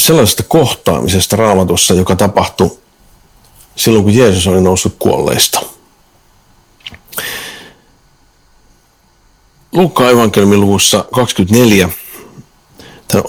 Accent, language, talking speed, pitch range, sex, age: native, Finnish, 65 wpm, 95-120 Hz, male, 50-69